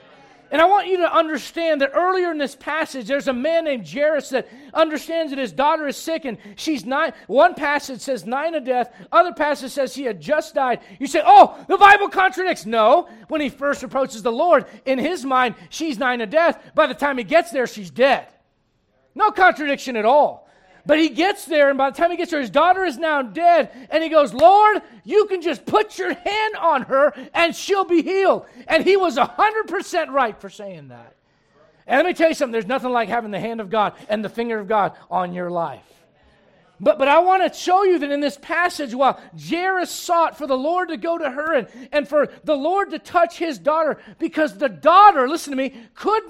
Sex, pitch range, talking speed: male, 250-335 Hz, 220 wpm